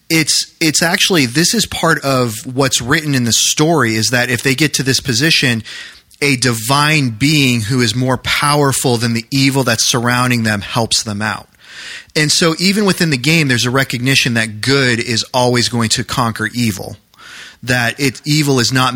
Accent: American